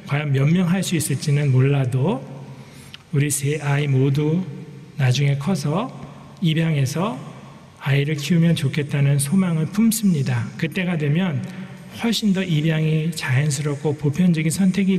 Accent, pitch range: native, 135-165 Hz